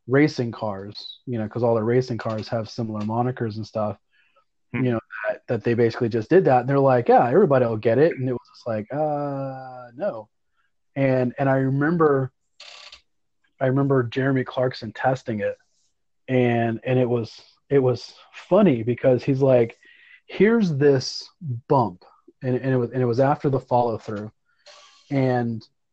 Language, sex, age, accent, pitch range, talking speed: English, male, 30-49, American, 120-145 Hz, 165 wpm